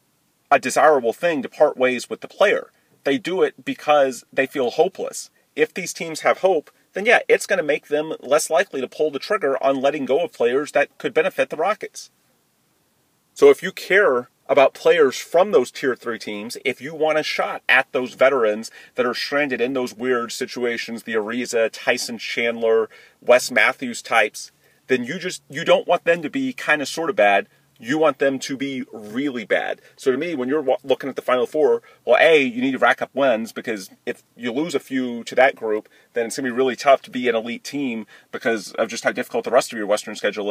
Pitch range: 115-170 Hz